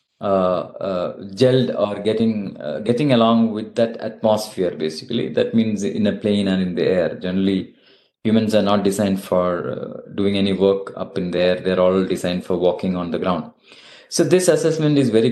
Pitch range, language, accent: 95-110 Hz, English, Indian